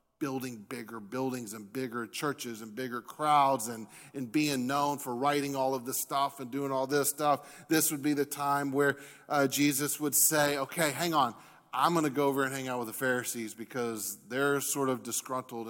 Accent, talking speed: American, 200 wpm